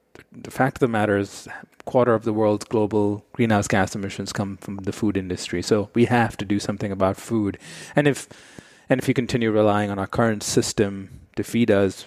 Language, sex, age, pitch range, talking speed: English, male, 30-49, 95-115 Hz, 205 wpm